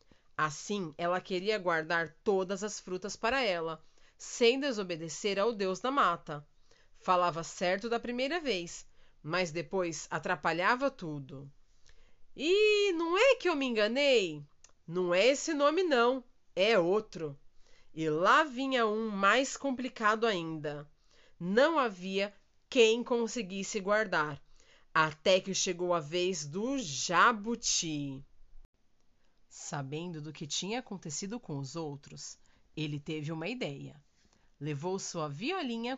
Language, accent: Portuguese, Brazilian